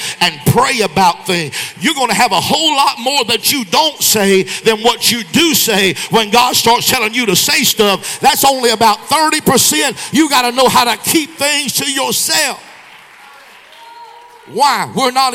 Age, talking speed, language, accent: 50-69, 170 wpm, English, American